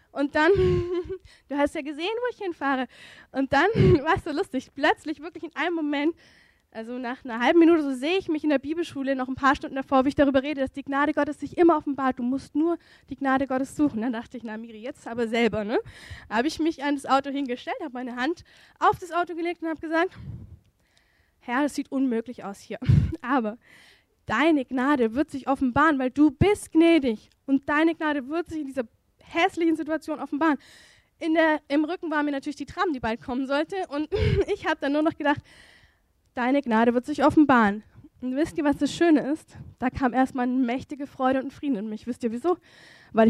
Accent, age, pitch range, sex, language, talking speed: German, 10-29, 255-315 Hz, female, German, 215 wpm